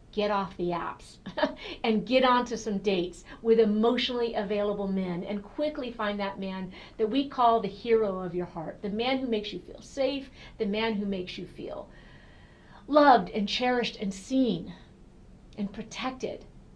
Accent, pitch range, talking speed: American, 200-260 Hz, 165 wpm